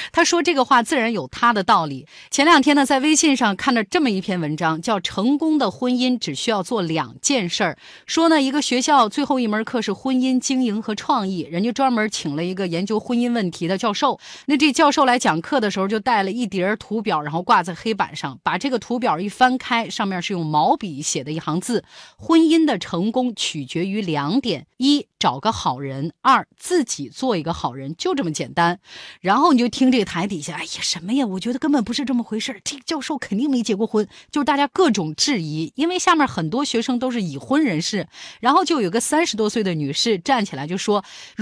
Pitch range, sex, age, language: 185-275 Hz, female, 30-49, Chinese